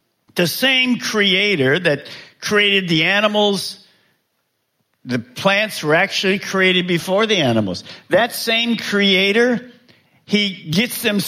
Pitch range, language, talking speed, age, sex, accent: 160-230 Hz, English, 110 wpm, 50-69, male, American